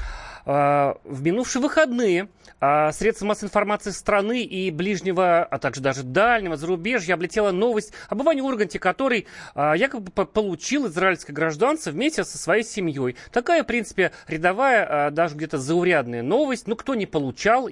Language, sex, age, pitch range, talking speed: Russian, male, 30-49, 155-200 Hz, 135 wpm